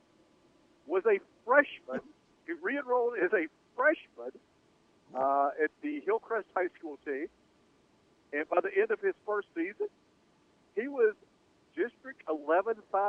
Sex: male